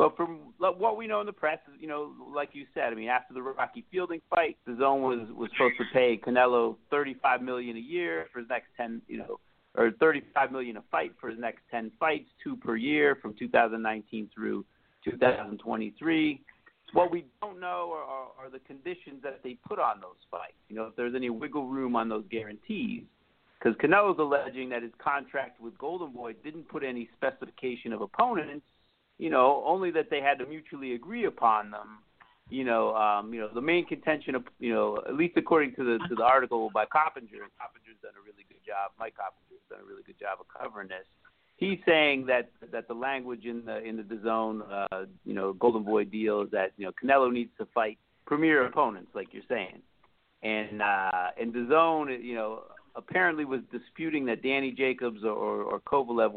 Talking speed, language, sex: 200 wpm, English, male